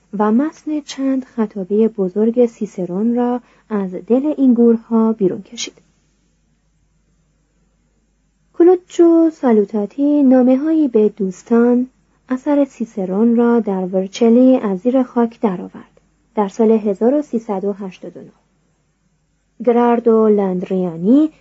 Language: Persian